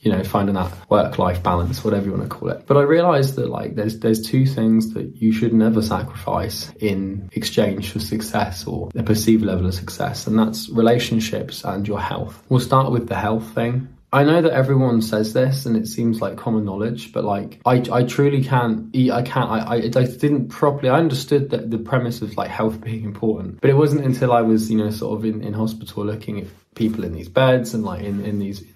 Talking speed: 225 wpm